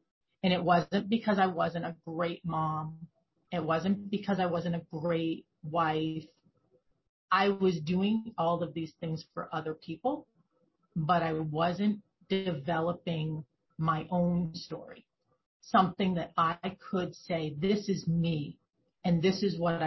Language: English